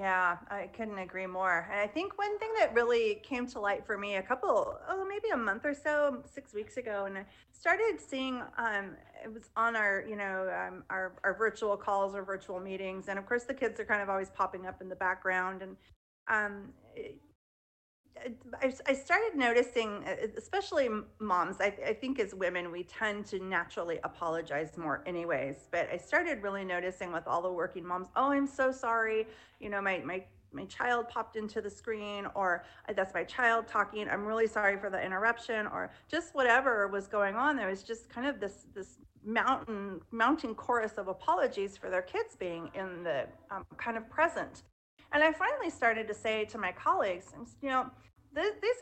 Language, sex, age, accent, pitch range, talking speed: English, female, 30-49, American, 195-260 Hz, 190 wpm